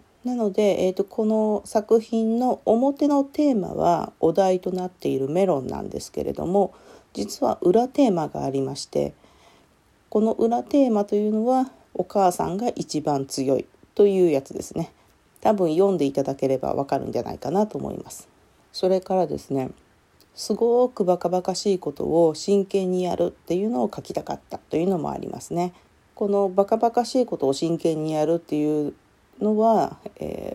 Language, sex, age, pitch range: Japanese, female, 40-59, 155-220 Hz